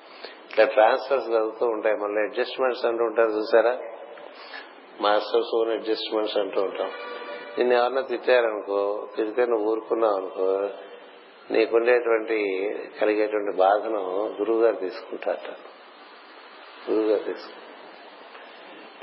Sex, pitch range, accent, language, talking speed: male, 110-125 Hz, native, Telugu, 85 wpm